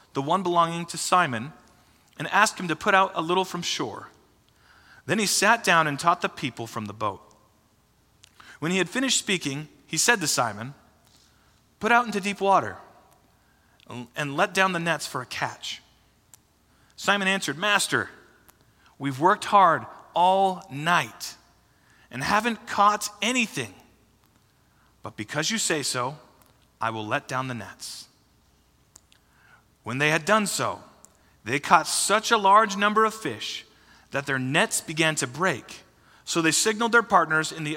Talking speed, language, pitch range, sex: 155 wpm, English, 140-205 Hz, male